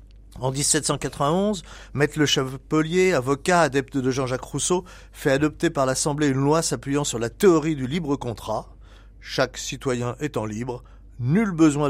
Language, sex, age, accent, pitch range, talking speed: French, male, 40-59, French, 120-155 Hz, 145 wpm